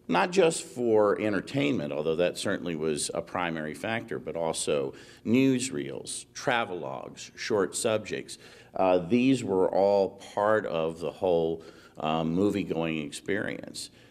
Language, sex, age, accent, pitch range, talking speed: English, male, 50-69, American, 80-100 Hz, 125 wpm